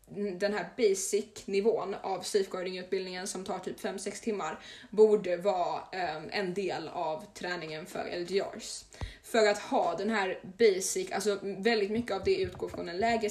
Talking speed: 150 wpm